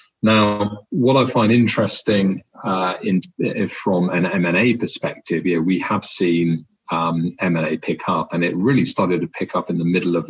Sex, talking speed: male, 180 wpm